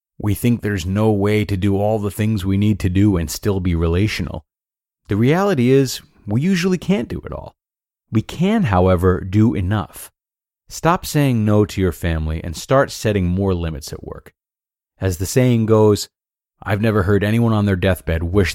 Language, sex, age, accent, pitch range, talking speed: English, male, 30-49, American, 90-120 Hz, 185 wpm